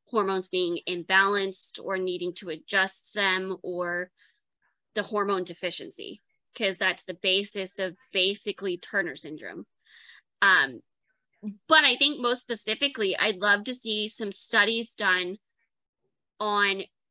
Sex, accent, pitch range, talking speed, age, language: female, American, 190-225 Hz, 120 wpm, 20-39, English